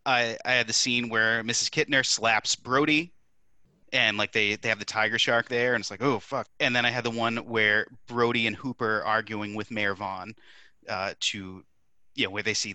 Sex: male